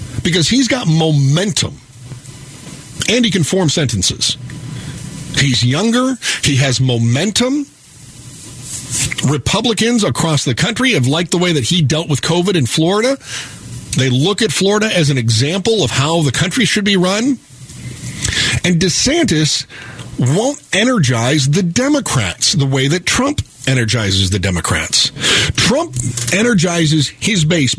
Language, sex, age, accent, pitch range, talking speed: English, male, 50-69, American, 125-175 Hz, 130 wpm